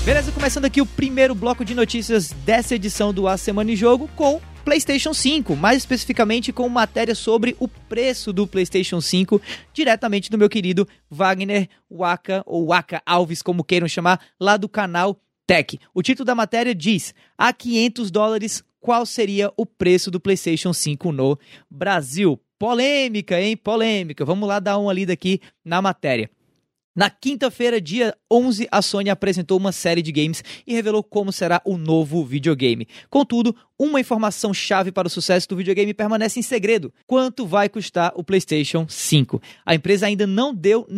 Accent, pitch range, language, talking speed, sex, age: Brazilian, 180-230 Hz, Portuguese, 165 wpm, male, 20-39